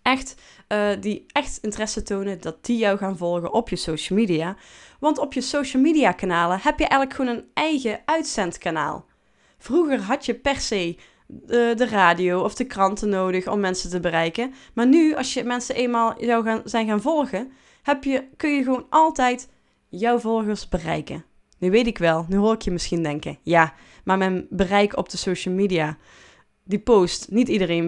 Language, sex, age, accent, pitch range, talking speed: Dutch, female, 20-39, Dutch, 185-250 Hz, 185 wpm